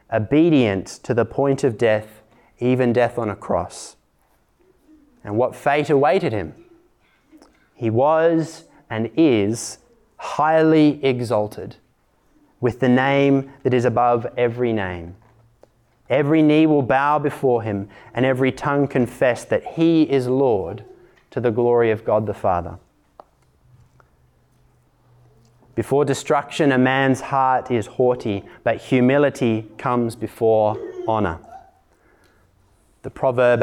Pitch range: 115-140 Hz